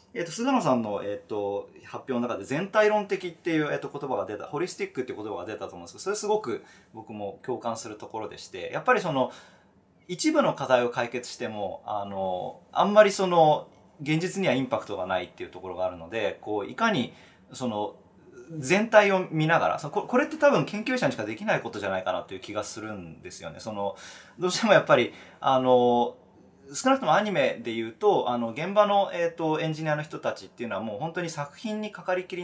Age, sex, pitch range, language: 20-39, male, 120-195 Hz, Japanese